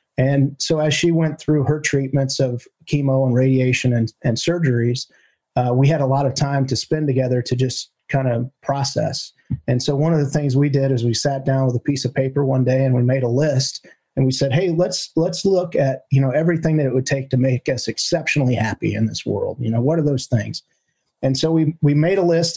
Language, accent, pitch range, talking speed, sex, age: English, American, 125-150 Hz, 240 wpm, male, 30-49